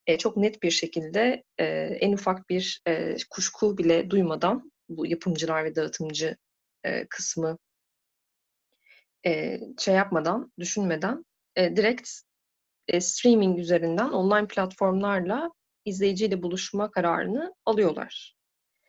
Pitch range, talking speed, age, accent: 170-210 Hz, 85 wpm, 30-49, native